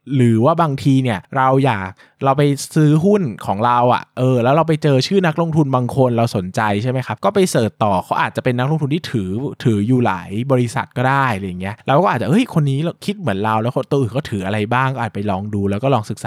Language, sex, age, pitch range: Thai, male, 20-39, 110-150 Hz